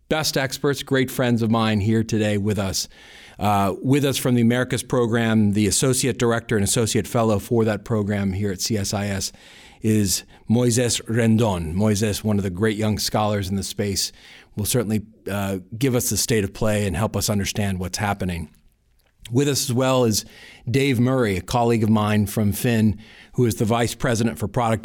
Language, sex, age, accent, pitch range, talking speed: English, male, 40-59, American, 100-120 Hz, 185 wpm